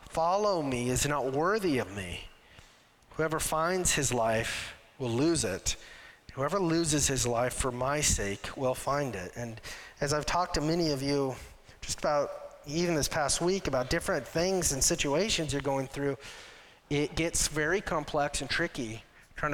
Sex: male